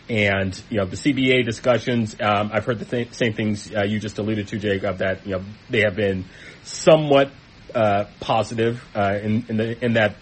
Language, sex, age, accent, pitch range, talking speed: English, male, 30-49, American, 95-110 Hz, 200 wpm